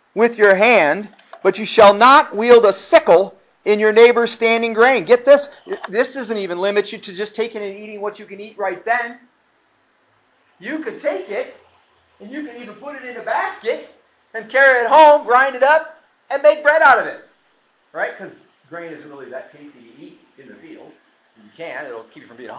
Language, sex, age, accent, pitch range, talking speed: English, male, 40-59, American, 190-270 Hz, 205 wpm